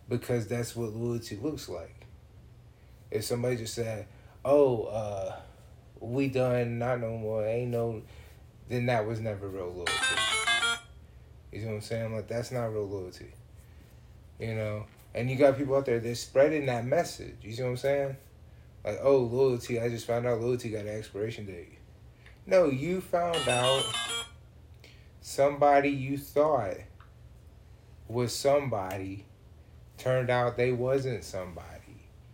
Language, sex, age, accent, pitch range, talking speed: English, male, 30-49, American, 110-135 Hz, 145 wpm